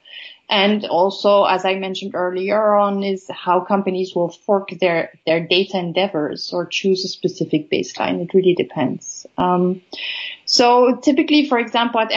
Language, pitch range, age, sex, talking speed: English, 190-260 Hz, 30-49, female, 150 wpm